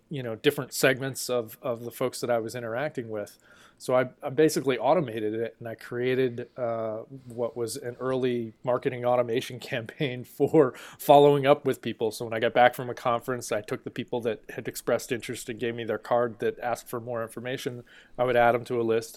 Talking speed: 215 wpm